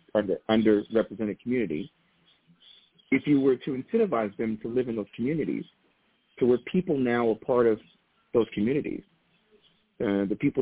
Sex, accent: male, American